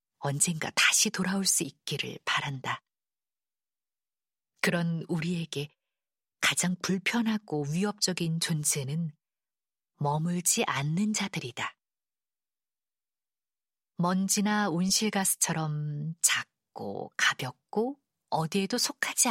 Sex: female